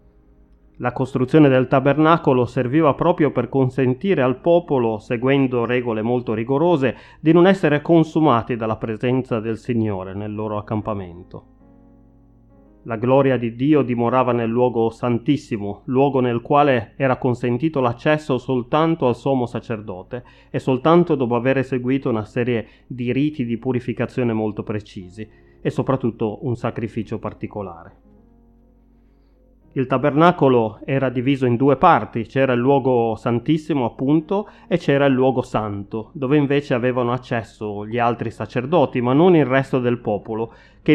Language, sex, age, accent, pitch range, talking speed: Italian, male, 30-49, native, 115-140 Hz, 135 wpm